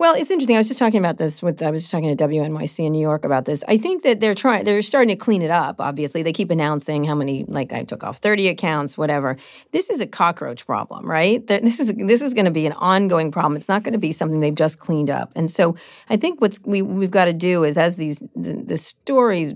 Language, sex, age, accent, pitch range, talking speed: English, female, 40-59, American, 150-200 Hz, 265 wpm